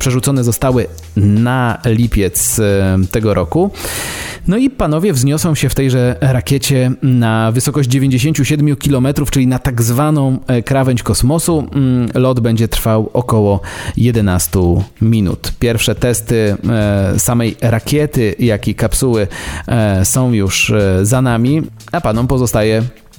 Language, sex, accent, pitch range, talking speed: Polish, male, native, 110-135 Hz, 115 wpm